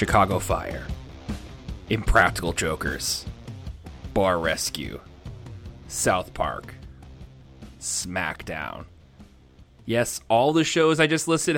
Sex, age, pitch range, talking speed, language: male, 30-49, 115-170 Hz, 85 wpm, English